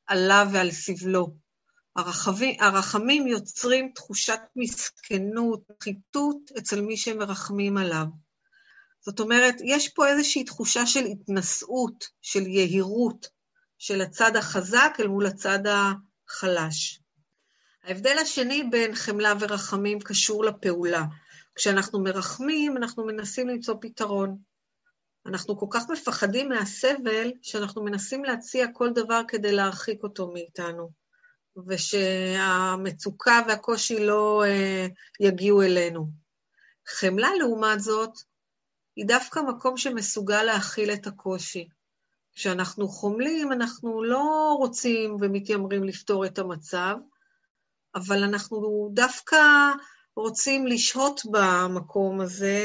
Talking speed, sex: 105 wpm, female